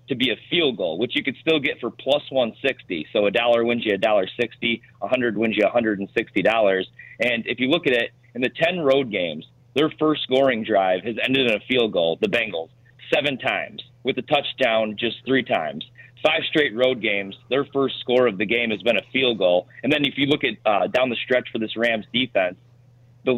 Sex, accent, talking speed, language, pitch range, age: male, American, 245 wpm, English, 110-135 Hz, 30-49